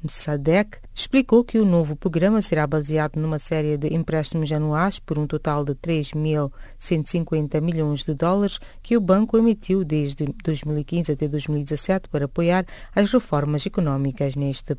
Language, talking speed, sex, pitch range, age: English, 140 wpm, female, 150-185 Hz, 30-49